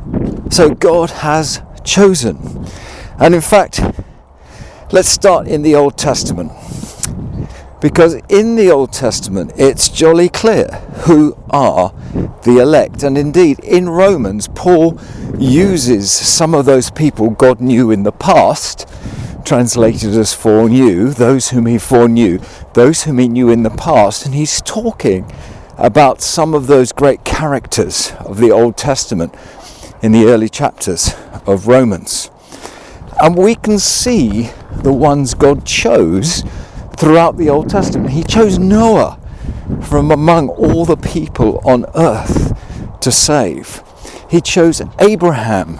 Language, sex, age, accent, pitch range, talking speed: English, male, 50-69, British, 120-170 Hz, 130 wpm